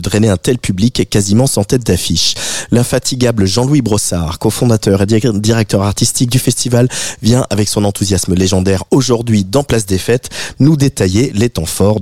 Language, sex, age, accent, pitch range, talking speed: French, male, 30-49, French, 100-130 Hz, 165 wpm